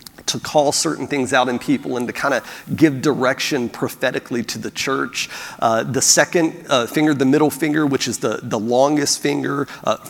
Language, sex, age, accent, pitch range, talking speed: English, male, 40-59, American, 130-145 Hz, 190 wpm